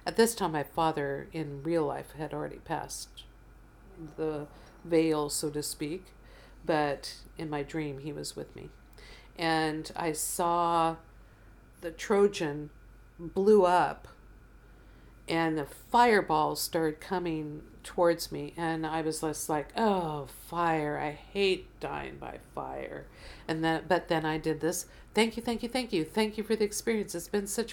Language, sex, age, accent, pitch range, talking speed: English, female, 50-69, American, 150-180 Hz, 155 wpm